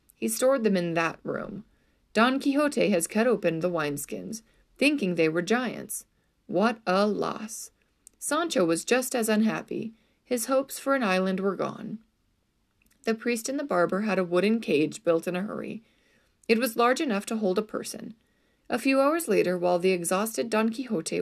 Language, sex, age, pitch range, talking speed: English, female, 30-49, 185-250 Hz, 175 wpm